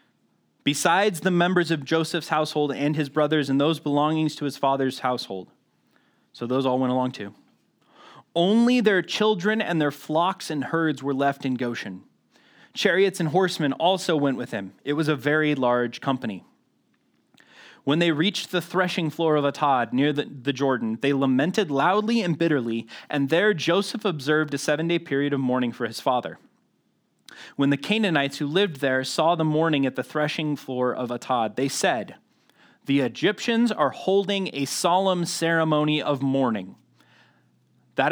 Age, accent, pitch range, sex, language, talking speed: 20-39, American, 130-165 Hz, male, English, 165 wpm